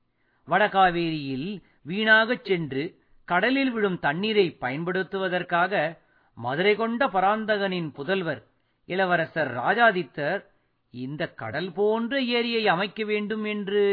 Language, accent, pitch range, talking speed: Tamil, native, 165-225 Hz, 85 wpm